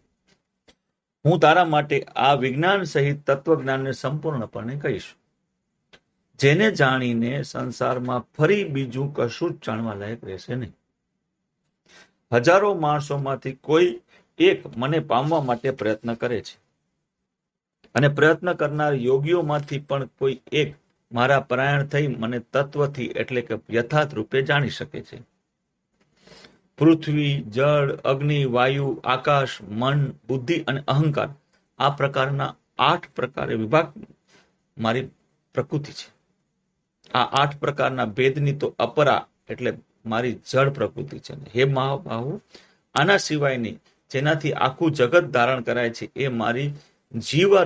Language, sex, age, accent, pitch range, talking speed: Gujarati, male, 50-69, native, 125-155 Hz, 75 wpm